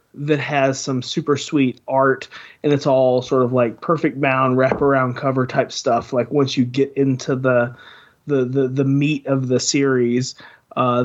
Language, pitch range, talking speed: English, 130-150 Hz, 175 wpm